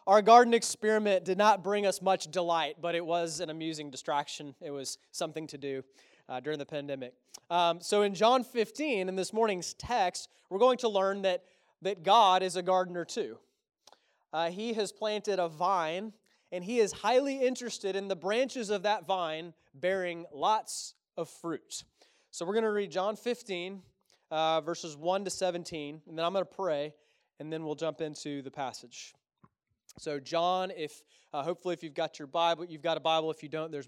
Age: 20-39